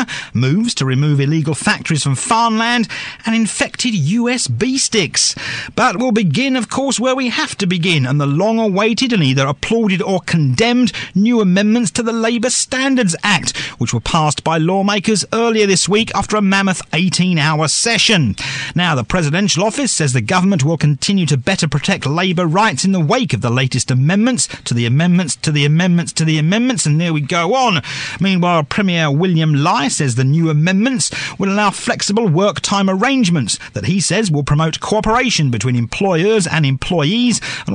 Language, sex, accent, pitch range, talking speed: English, male, British, 150-220 Hz, 175 wpm